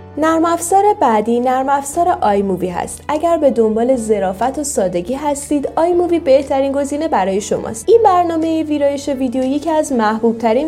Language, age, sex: Persian, 10-29, female